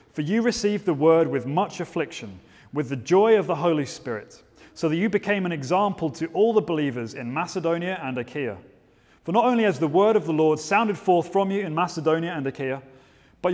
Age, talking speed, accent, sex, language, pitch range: 30-49, 210 wpm, British, male, English, 145-190 Hz